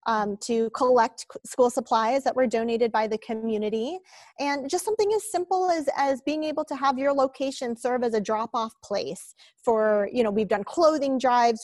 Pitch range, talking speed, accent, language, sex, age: 205-250 Hz, 190 wpm, American, English, female, 30-49